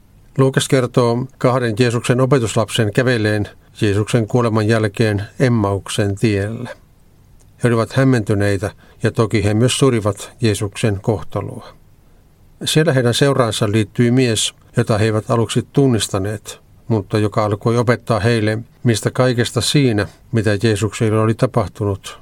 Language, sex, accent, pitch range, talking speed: Finnish, male, native, 105-125 Hz, 115 wpm